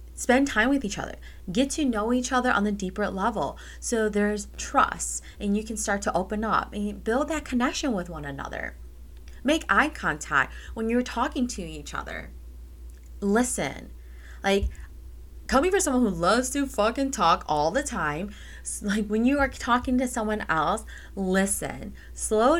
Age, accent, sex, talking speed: 20-39, American, female, 165 wpm